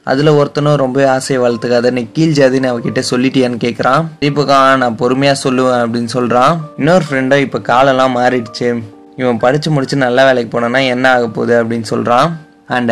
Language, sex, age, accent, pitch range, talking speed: Tamil, male, 20-39, native, 125-145 Hz, 160 wpm